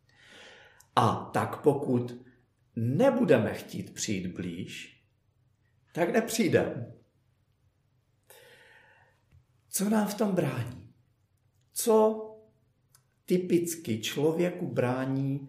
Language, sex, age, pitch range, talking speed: Czech, male, 50-69, 110-145 Hz, 70 wpm